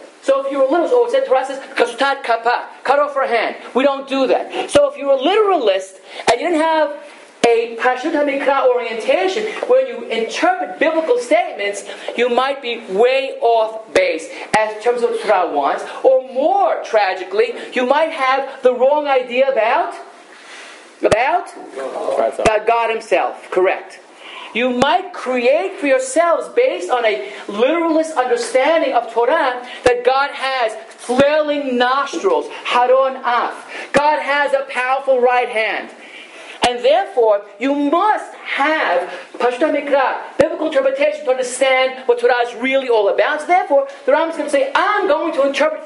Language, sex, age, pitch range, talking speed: English, male, 40-59, 245-310 Hz, 155 wpm